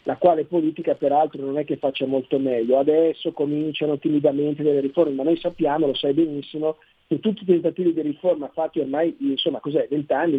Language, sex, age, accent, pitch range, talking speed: Italian, male, 50-69, native, 150-180 Hz, 190 wpm